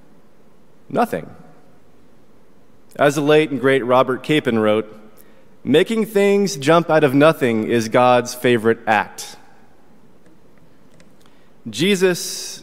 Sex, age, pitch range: male, 30-49, 115-145 Hz